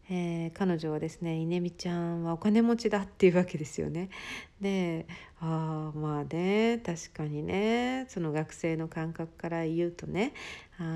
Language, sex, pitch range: Japanese, female, 160-195 Hz